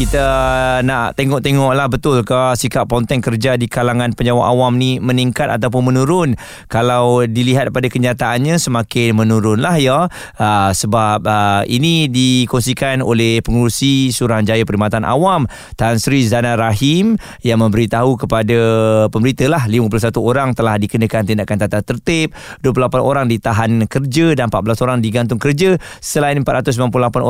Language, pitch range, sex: Malay, 115-145 Hz, male